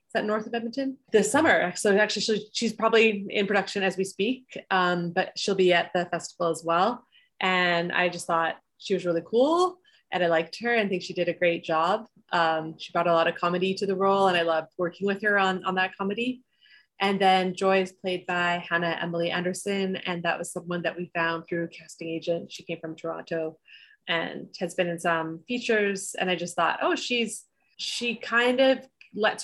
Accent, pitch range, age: American, 170-205 Hz, 20-39